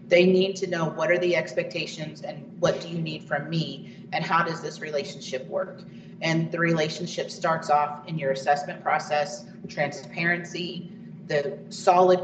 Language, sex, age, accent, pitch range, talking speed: English, female, 30-49, American, 160-195 Hz, 165 wpm